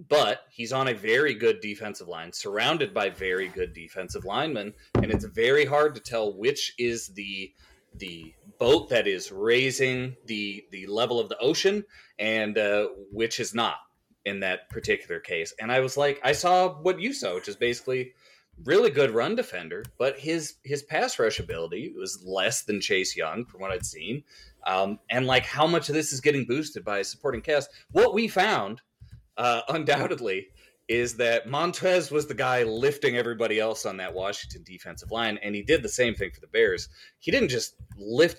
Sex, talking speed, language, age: male, 185 wpm, English, 30-49